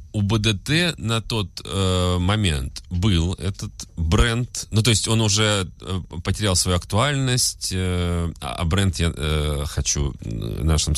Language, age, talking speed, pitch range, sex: Russian, 30-49, 135 wpm, 80-105 Hz, male